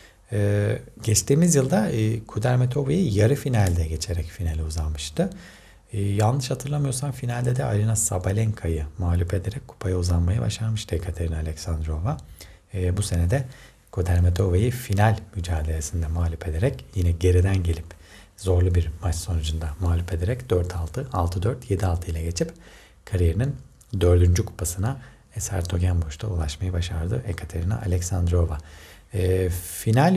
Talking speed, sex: 110 wpm, male